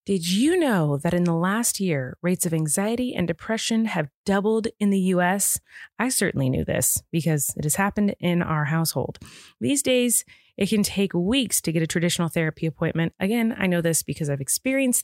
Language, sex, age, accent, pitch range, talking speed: English, female, 20-39, American, 165-210 Hz, 190 wpm